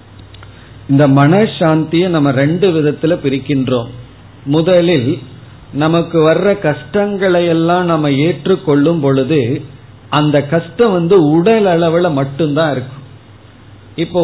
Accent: native